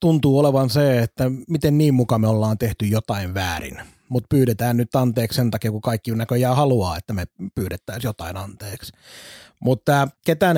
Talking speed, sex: 165 wpm, male